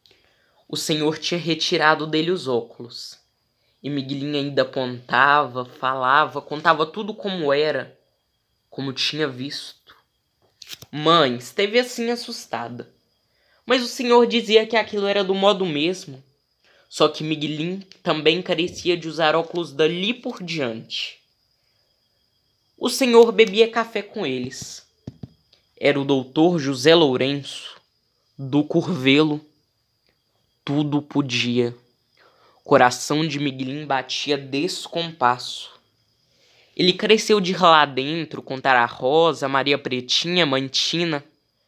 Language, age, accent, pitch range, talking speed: Portuguese, 10-29, Brazilian, 130-175 Hz, 110 wpm